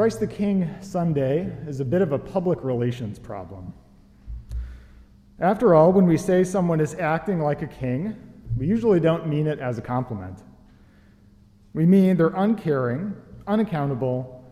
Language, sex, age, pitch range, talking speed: English, male, 40-59, 120-175 Hz, 150 wpm